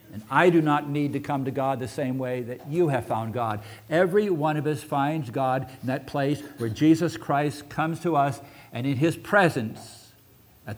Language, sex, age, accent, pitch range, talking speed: English, male, 60-79, American, 110-150 Hz, 205 wpm